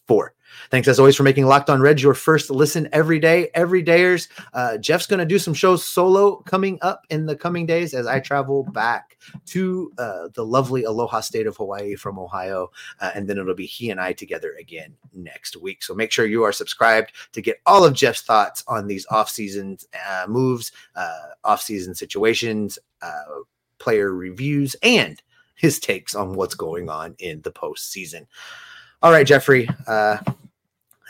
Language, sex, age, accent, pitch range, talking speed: English, male, 30-49, American, 110-175 Hz, 175 wpm